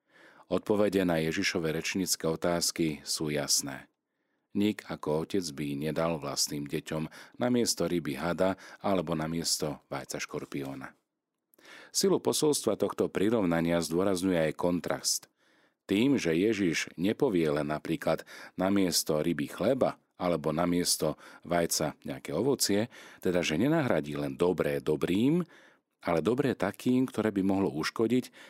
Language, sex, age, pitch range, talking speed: Slovak, male, 40-59, 75-95 Hz, 125 wpm